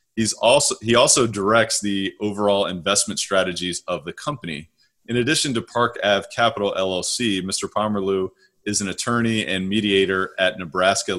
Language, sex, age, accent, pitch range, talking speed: English, male, 30-49, American, 95-110 Hz, 150 wpm